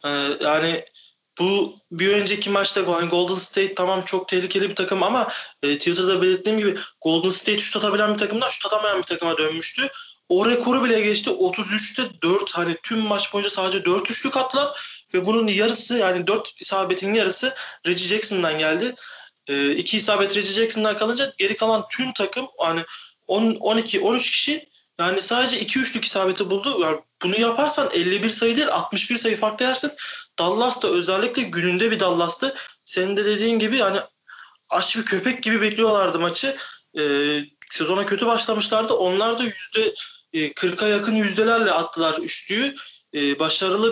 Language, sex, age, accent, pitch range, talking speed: Turkish, male, 30-49, native, 175-230 Hz, 150 wpm